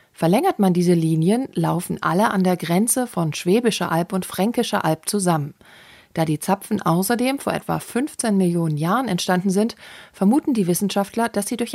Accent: German